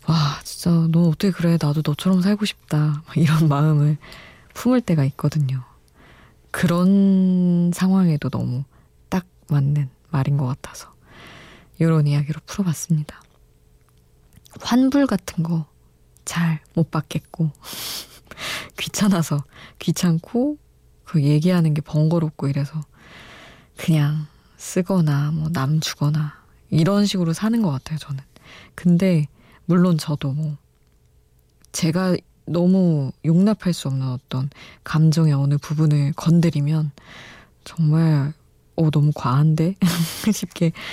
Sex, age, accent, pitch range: female, 20-39, native, 145-180 Hz